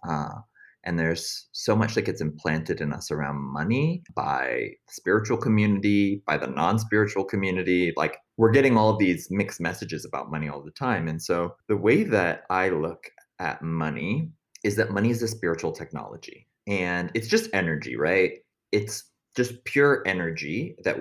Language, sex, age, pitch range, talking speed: English, male, 30-49, 85-115 Hz, 165 wpm